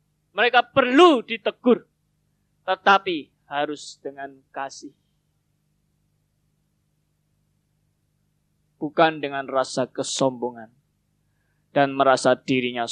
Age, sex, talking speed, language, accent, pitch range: 20-39, male, 65 wpm, Indonesian, native, 125-175 Hz